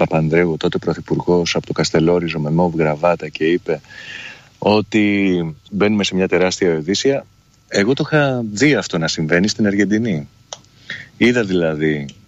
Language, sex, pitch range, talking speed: Greek, male, 85-120 Hz, 135 wpm